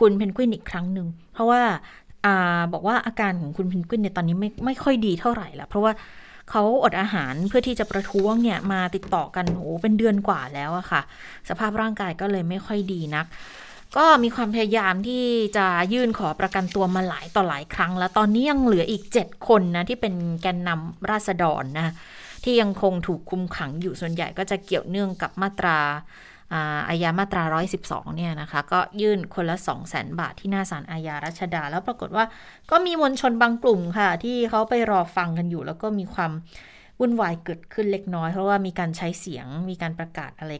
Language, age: Thai, 20-39